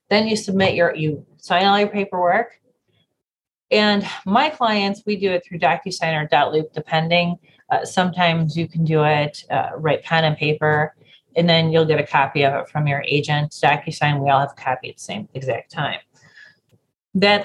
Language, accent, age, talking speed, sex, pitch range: English, American, 30-49, 185 wpm, female, 155-200 Hz